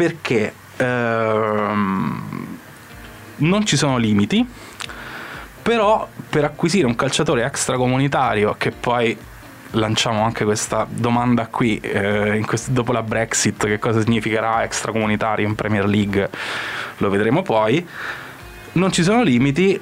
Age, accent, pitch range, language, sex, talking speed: 20-39, native, 110-140 Hz, Italian, male, 110 wpm